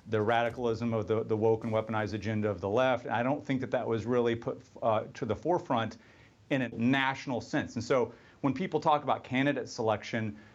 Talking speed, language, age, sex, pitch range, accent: 205 wpm, English, 40-59, male, 115-135 Hz, American